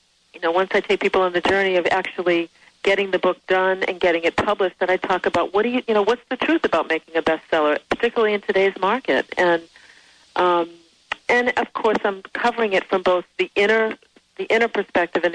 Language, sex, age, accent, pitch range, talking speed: English, female, 40-59, American, 170-210 Hz, 205 wpm